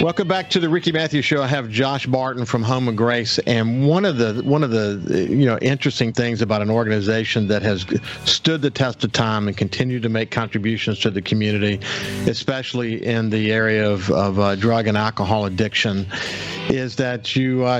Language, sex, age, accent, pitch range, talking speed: English, male, 50-69, American, 110-135 Hz, 200 wpm